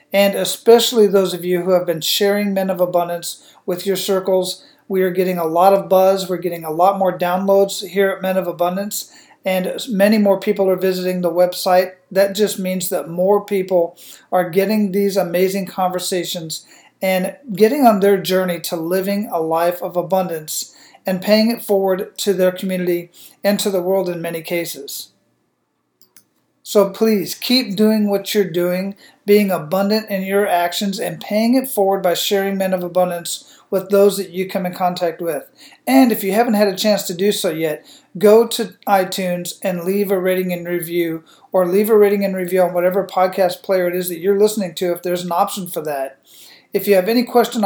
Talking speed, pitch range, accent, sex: 195 wpm, 180-205 Hz, American, male